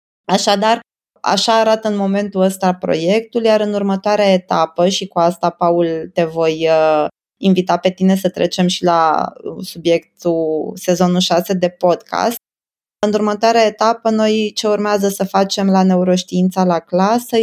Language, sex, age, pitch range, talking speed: Romanian, female, 20-39, 165-195 Hz, 140 wpm